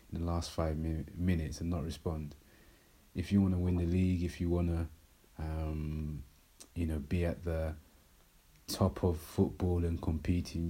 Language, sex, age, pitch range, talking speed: English, male, 30-49, 80-90 Hz, 165 wpm